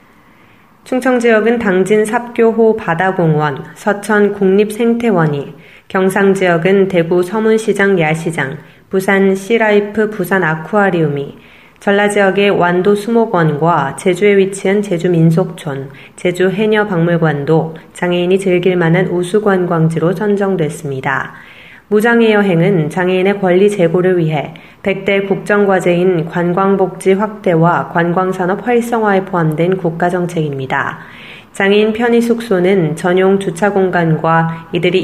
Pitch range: 170-205 Hz